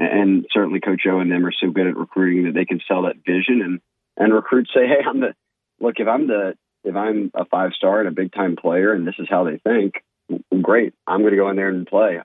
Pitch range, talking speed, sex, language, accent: 90-115 Hz, 260 wpm, male, English, American